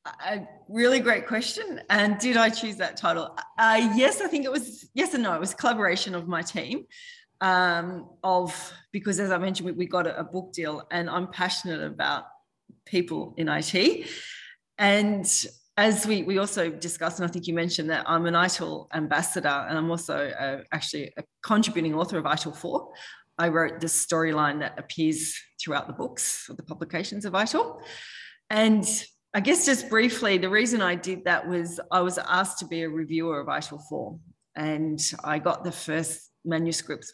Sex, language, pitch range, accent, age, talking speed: female, English, 155-200 Hz, Australian, 30-49, 180 wpm